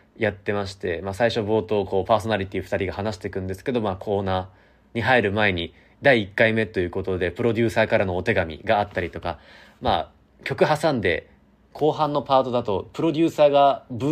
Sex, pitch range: male, 95-140 Hz